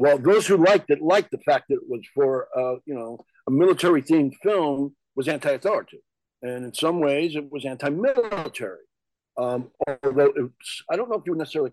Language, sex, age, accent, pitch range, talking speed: English, male, 50-69, American, 125-195 Hz, 195 wpm